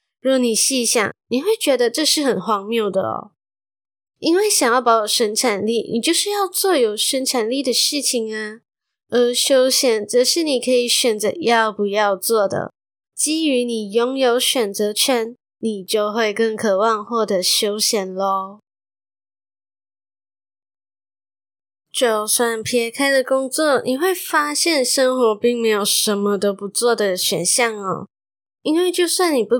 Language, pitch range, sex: Chinese, 215-260 Hz, female